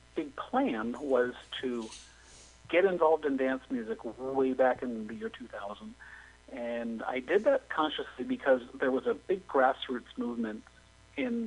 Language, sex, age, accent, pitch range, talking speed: English, male, 40-59, American, 115-155 Hz, 145 wpm